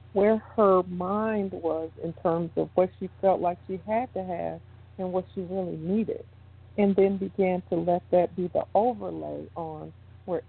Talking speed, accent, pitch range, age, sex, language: 175 wpm, American, 150-200 Hz, 50-69, female, English